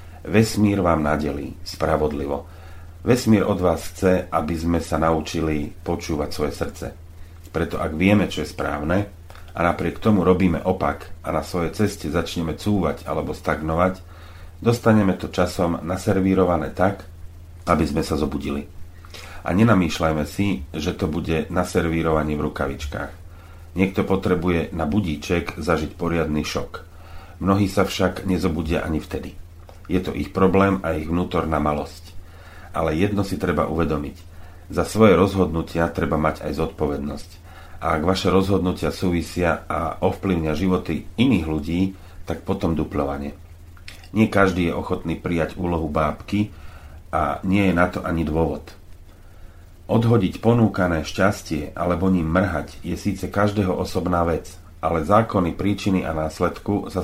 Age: 40-59